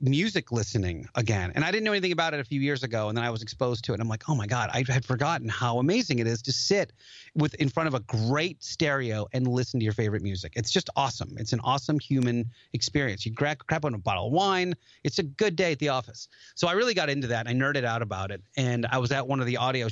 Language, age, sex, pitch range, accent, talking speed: English, 30-49, male, 115-155 Hz, American, 275 wpm